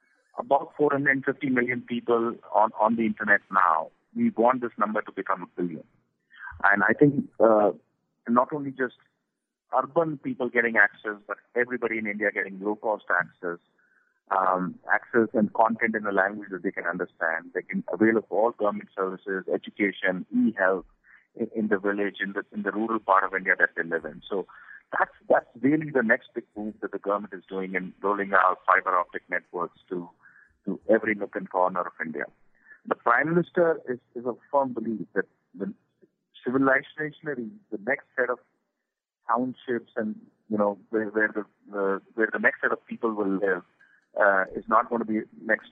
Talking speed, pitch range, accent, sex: 175 wpm, 100-120 Hz, Indian, male